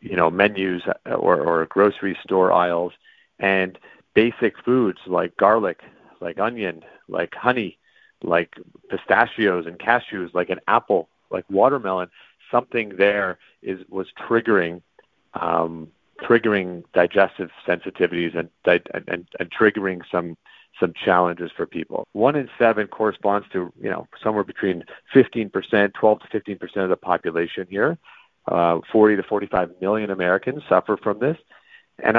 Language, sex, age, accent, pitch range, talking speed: English, male, 40-59, American, 90-110 Hz, 140 wpm